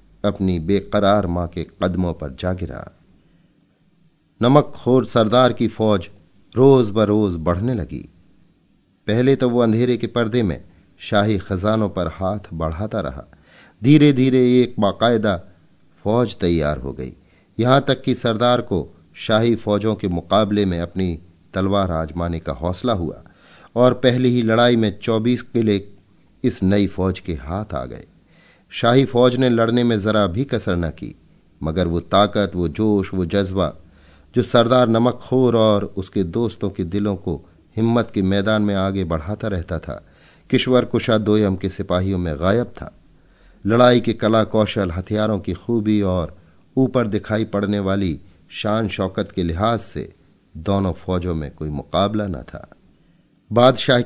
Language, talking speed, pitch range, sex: Hindi, 150 wpm, 90-115 Hz, male